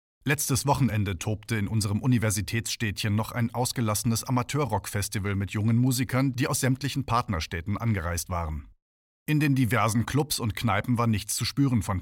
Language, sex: German, male